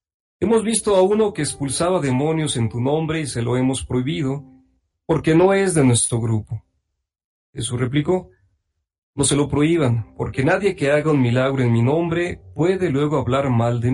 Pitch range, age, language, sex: 120-160 Hz, 40-59, Spanish, male